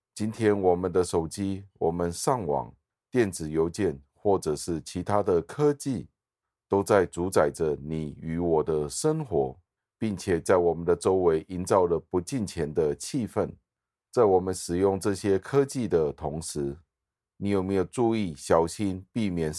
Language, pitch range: Chinese, 80-100 Hz